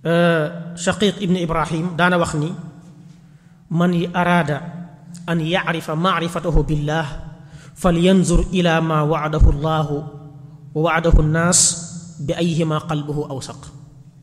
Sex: male